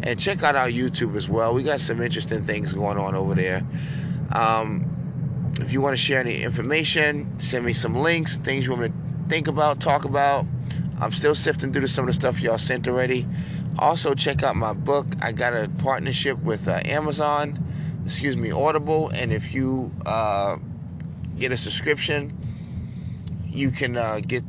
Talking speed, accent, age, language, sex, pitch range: 180 wpm, American, 30-49, English, male, 110-150 Hz